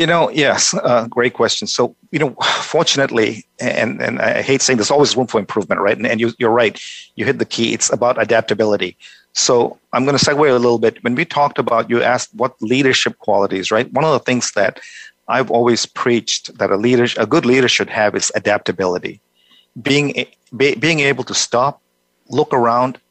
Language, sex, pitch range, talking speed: English, male, 110-135 Hz, 200 wpm